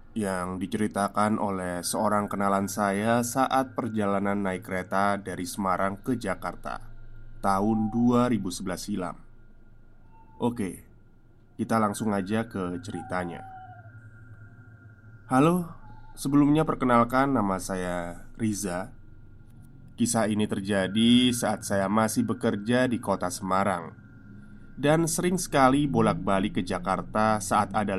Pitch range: 100-120 Hz